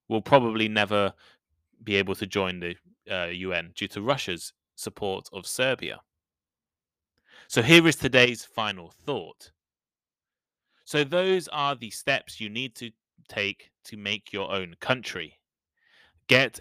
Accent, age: British, 20-39